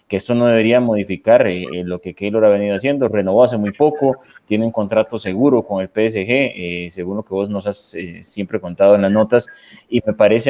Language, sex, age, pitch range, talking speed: Spanish, male, 30-49, 100-125 Hz, 230 wpm